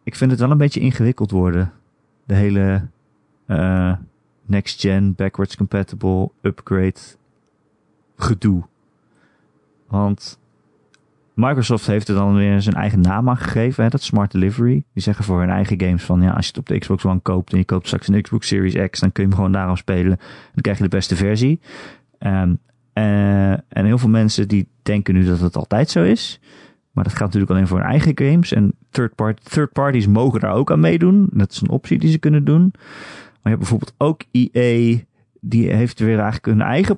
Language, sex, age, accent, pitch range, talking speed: Dutch, male, 30-49, Dutch, 100-140 Hz, 195 wpm